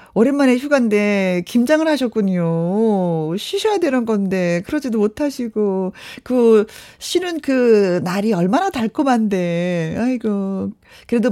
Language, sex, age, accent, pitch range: Korean, female, 40-59, native, 195-290 Hz